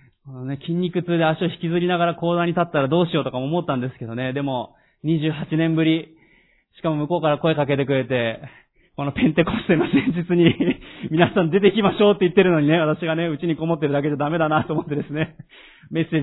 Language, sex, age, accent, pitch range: Japanese, male, 20-39, native, 130-165 Hz